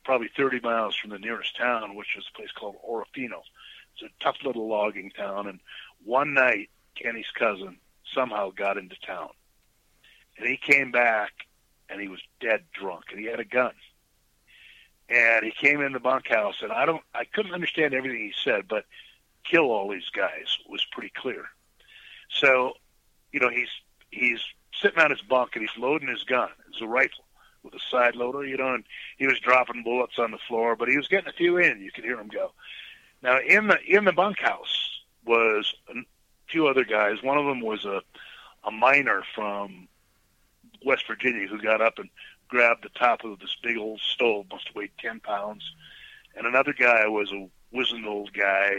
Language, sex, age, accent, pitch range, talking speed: English, male, 50-69, American, 105-135 Hz, 190 wpm